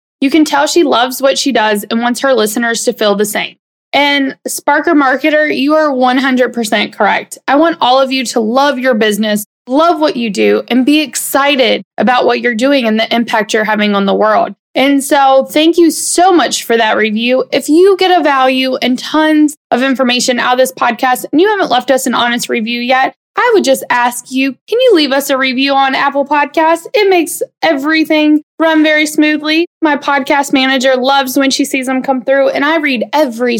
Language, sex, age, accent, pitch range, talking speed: English, female, 20-39, American, 240-305 Hz, 205 wpm